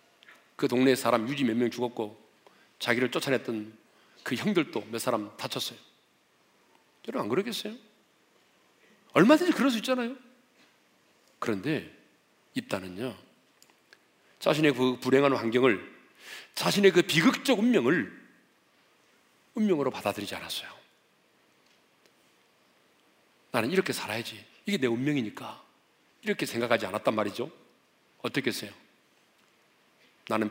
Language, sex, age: Korean, male, 40-59